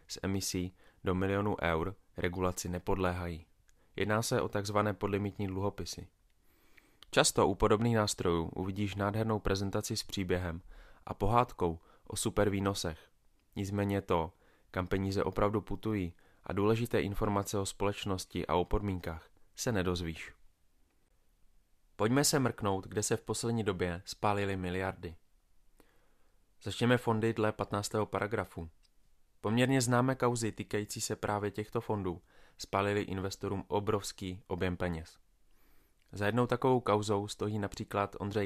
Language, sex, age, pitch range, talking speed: Czech, male, 20-39, 90-105 Hz, 120 wpm